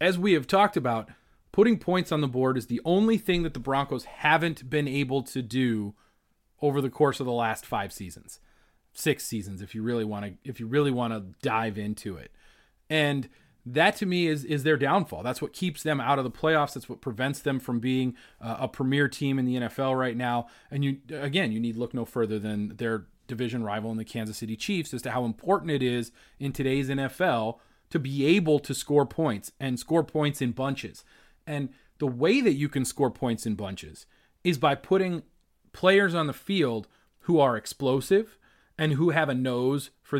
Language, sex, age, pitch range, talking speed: English, male, 30-49, 120-155 Hz, 205 wpm